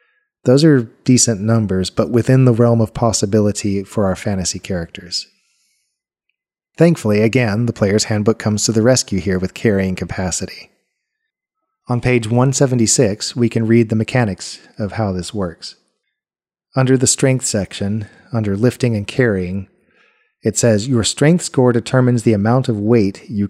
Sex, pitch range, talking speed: male, 100-125 Hz, 150 wpm